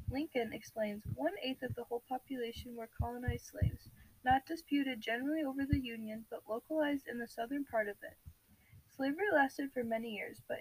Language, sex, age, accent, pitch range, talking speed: English, female, 10-29, American, 220-275 Hz, 170 wpm